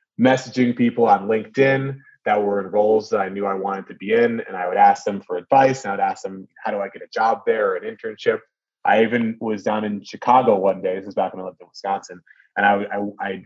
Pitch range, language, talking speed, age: 95-135 Hz, English, 255 wpm, 20-39